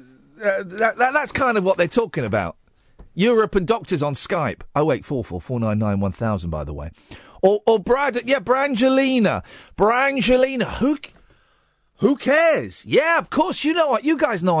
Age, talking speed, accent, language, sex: 40-59, 185 wpm, British, English, male